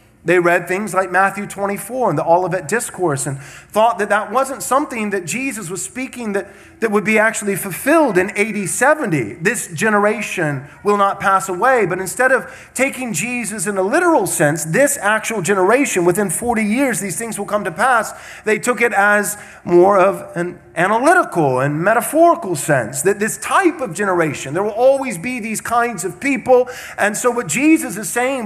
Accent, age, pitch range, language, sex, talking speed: American, 30-49, 190-255 Hz, English, male, 180 wpm